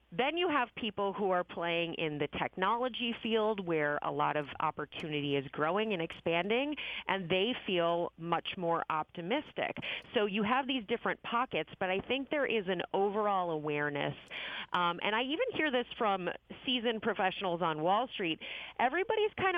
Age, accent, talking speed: 30-49, American, 165 wpm